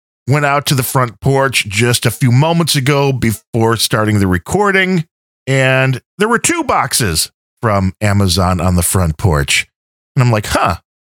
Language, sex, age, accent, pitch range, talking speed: English, male, 40-59, American, 105-160 Hz, 165 wpm